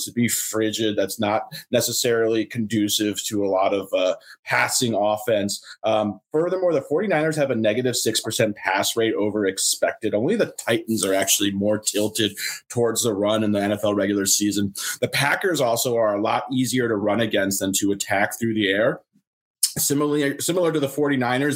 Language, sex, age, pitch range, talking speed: English, male, 30-49, 105-130 Hz, 175 wpm